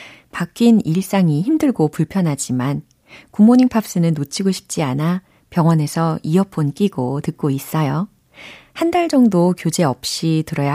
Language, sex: Korean, female